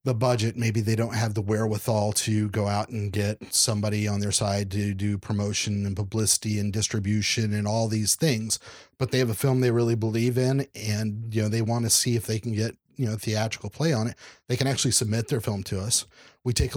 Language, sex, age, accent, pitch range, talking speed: English, male, 30-49, American, 110-130 Hz, 230 wpm